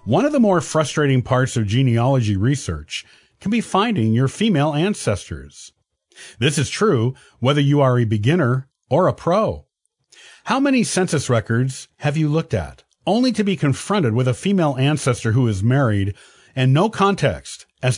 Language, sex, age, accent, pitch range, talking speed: English, male, 50-69, American, 120-170 Hz, 165 wpm